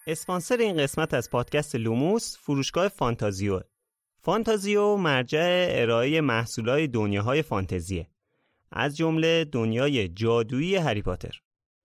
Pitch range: 105-150 Hz